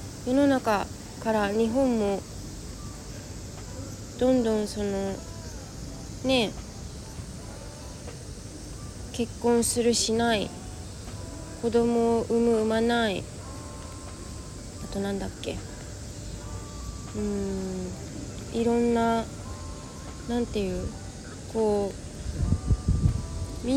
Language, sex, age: Japanese, female, 20-39